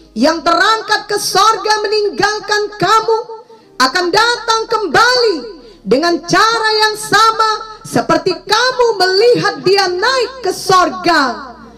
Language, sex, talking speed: English, female, 100 wpm